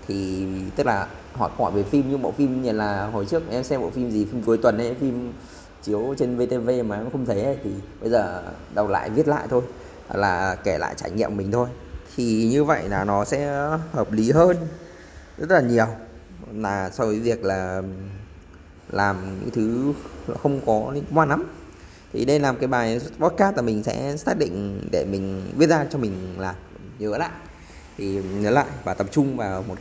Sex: male